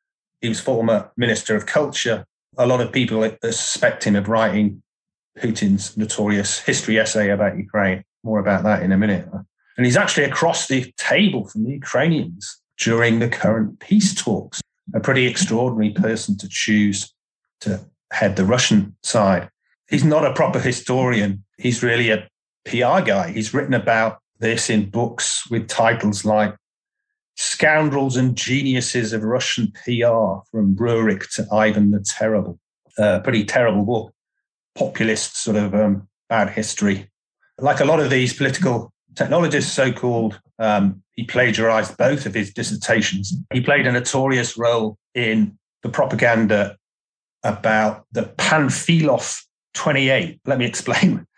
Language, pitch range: English, 105-125 Hz